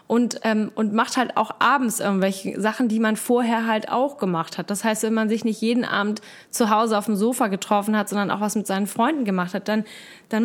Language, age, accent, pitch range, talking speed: German, 20-39, German, 200-235 Hz, 235 wpm